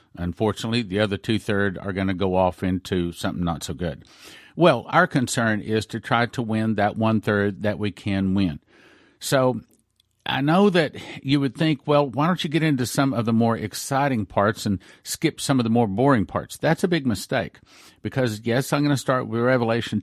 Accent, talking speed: American, 200 wpm